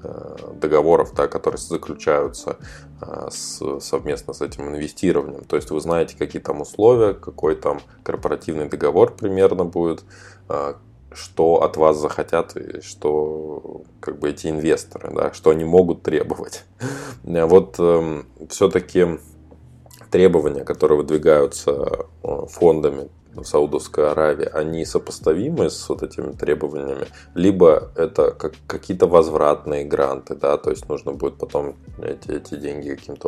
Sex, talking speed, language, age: male, 125 wpm, Russian, 20-39